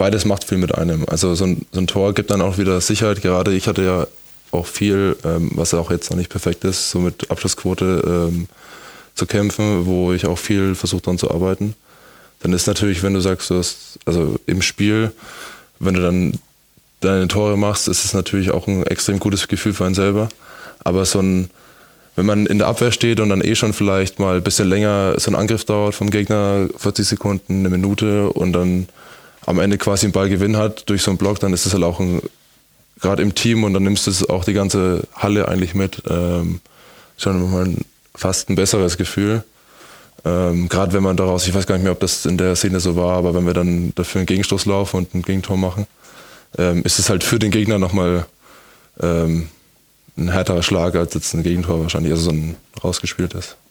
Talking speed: 210 wpm